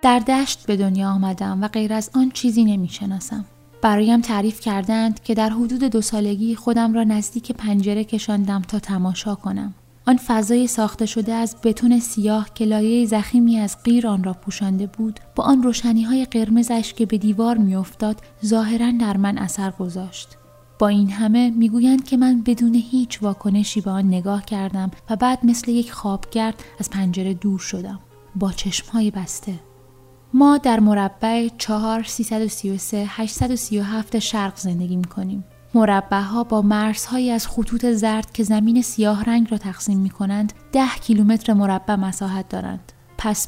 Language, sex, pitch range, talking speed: English, female, 200-230 Hz, 155 wpm